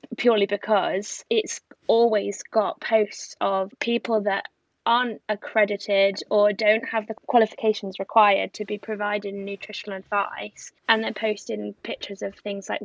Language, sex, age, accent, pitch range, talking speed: English, female, 10-29, British, 200-225 Hz, 135 wpm